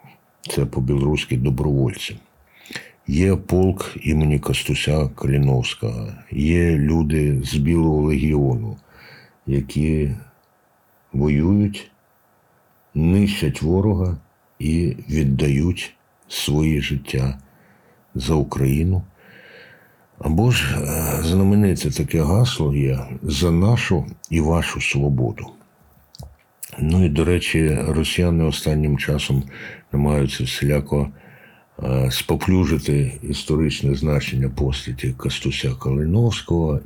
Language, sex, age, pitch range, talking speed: Ukrainian, male, 60-79, 70-85 Hz, 80 wpm